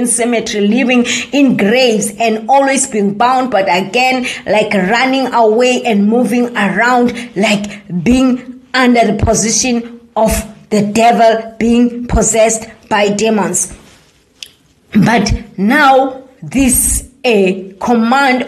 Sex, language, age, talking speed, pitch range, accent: female, English, 20-39, 105 wpm, 215-255 Hz, South African